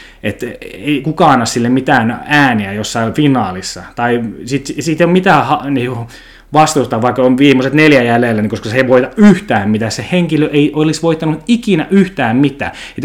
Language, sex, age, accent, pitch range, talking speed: Finnish, male, 20-39, native, 115-160 Hz, 175 wpm